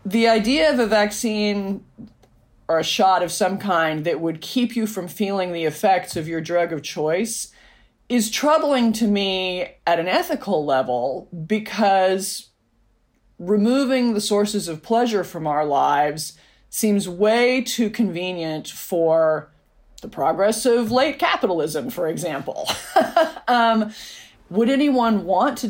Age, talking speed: 40-59, 135 wpm